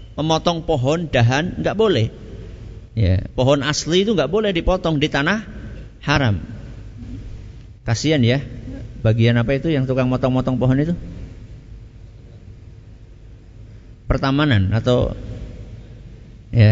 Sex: male